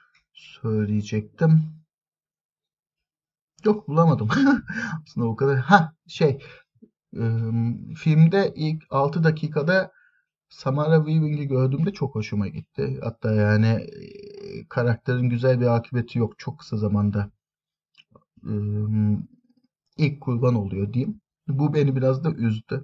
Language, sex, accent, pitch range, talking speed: Turkish, male, native, 110-155 Hz, 100 wpm